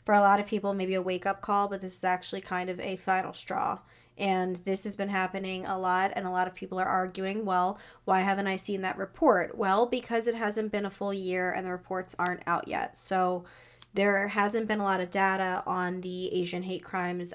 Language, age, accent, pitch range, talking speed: English, 20-39, American, 180-200 Hz, 230 wpm